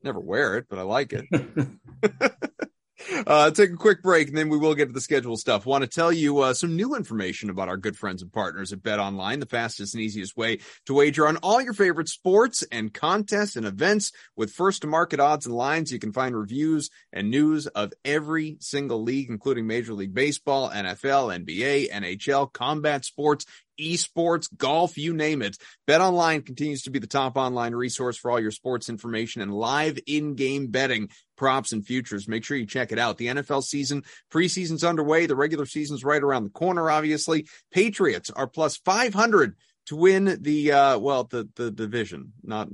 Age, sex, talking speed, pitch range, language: 30-49, male, 190 wpm, 115-160 Hz, English